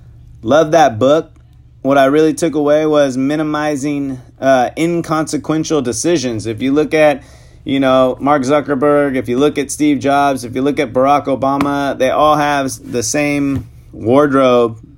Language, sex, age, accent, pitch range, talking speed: English, male, 30-49, American, 120-145 Hz, 155 wpm